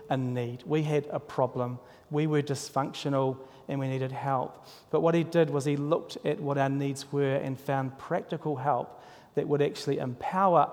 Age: 40-59